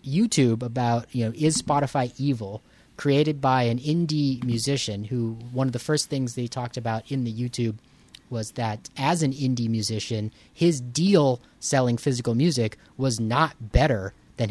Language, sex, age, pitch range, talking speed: English, male, 30-49, 115-150 Hz, 160 wpm